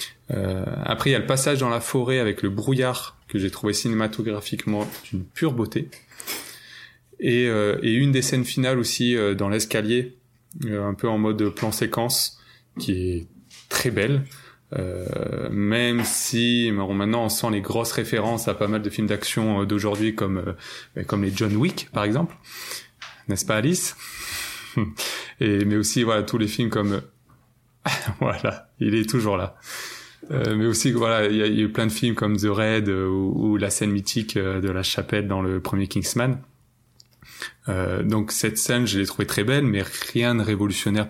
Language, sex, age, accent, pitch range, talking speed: French, male, 20-39, French, 100-120 Hz, 180 wpm